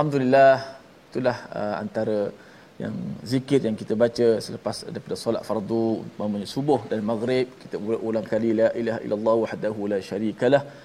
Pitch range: 110-130 Hz